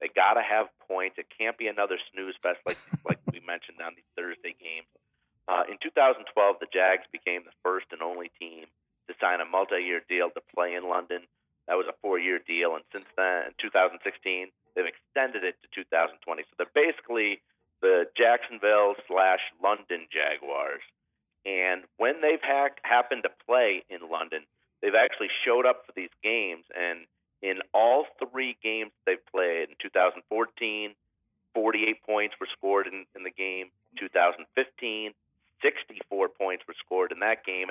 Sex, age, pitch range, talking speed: male, 40-59, 90-120 Hz, 160 wpm